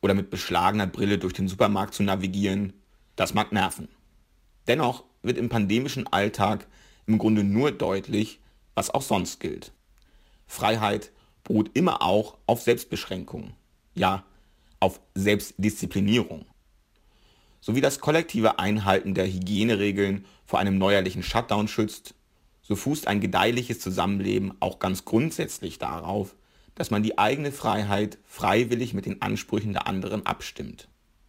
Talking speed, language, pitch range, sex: 130 wpm, German, 95-110 Hz, male